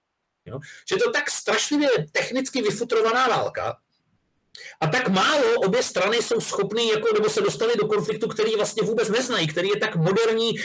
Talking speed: 165 wpm